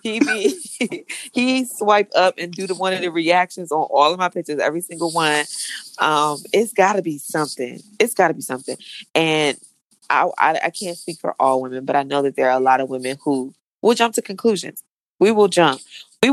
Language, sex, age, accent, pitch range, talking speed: English, female, 20-39, American, 140-205 Hz, 220 wpm